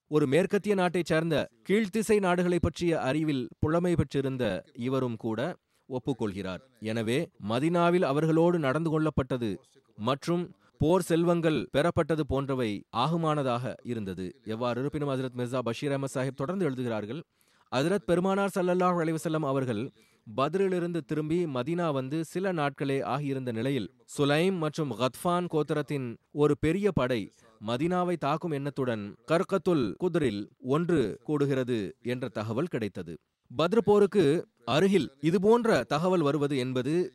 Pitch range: 130-175 Hz